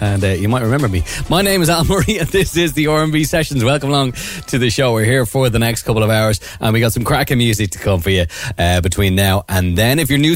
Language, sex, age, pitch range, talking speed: English, male, 30-49, 100-135 Hz, 280 wpm